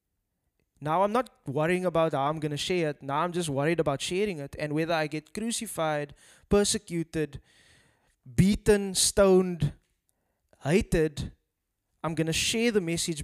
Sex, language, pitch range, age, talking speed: male, English, 135-165 Hz, 20-39, 150 wpm